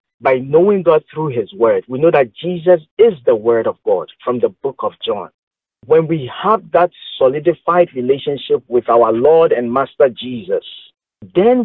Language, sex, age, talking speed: English, male, 50-69, 170 wpm